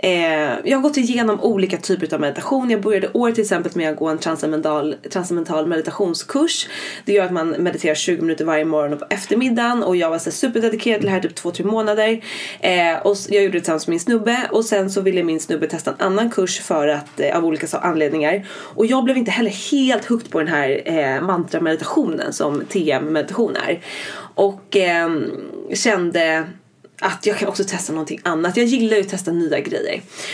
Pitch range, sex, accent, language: 165-225 Hz, female, native, Swedish